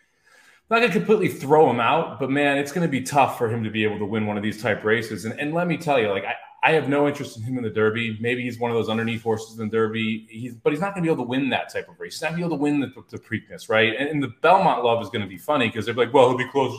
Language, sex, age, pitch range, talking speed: English, male, 30-49, 115-165 Hz, 345 wpm